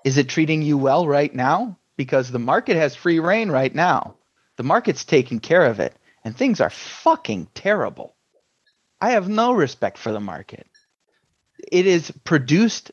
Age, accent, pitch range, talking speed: 30-49, American, 125-175 Hz, 165 wpm